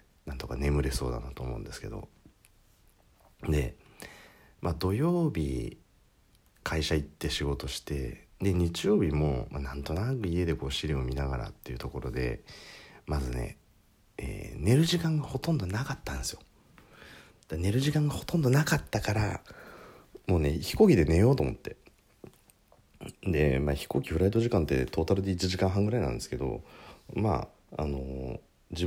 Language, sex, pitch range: Japanese, male, 70-110 Hz